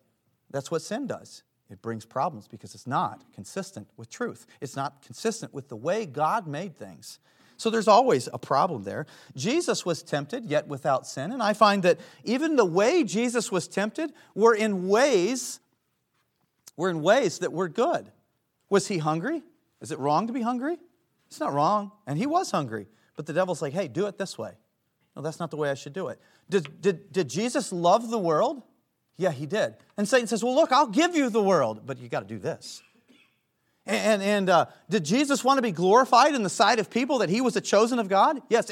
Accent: American